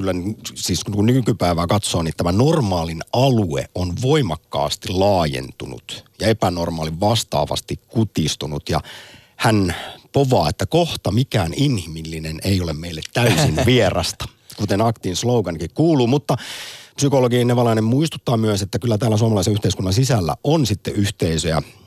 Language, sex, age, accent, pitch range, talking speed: Finnish, male, 50-69, native, 90-120 Hz, 125 wpm